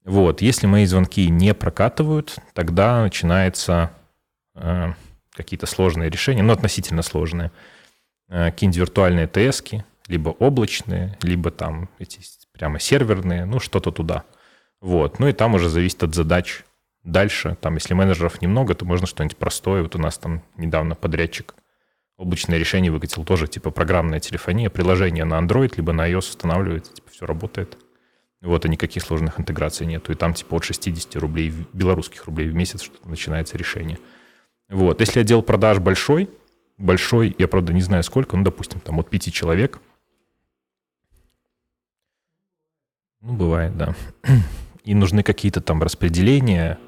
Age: 30-49